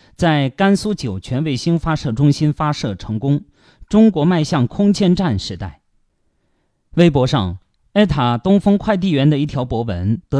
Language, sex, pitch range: Chinese, male, 110-160 Hz